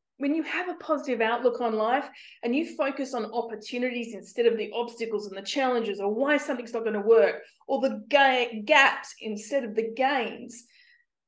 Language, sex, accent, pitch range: English, female, Australian, 235-350 Hz